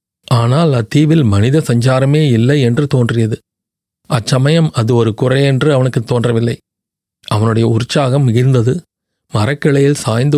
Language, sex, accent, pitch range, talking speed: Tamil, male, native, 115-145 Hz, 105 wpm